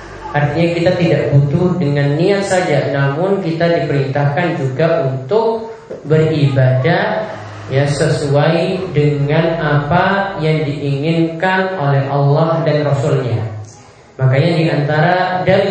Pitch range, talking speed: 140-175 Hz, 100 wpm